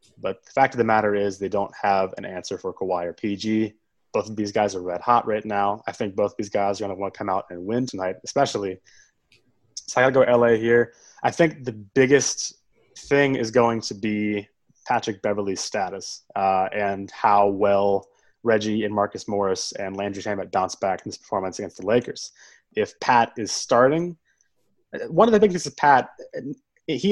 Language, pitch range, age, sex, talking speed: English, 100-125 Hz, 20-39, male, 200 wpm